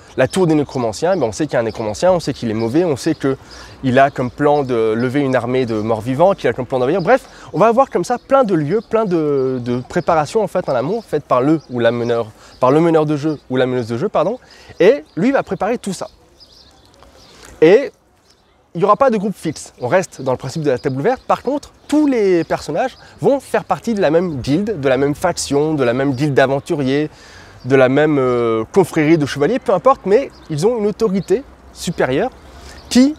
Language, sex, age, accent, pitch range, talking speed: French, male, 20-39, French, 130-210 Hz, 230 wpm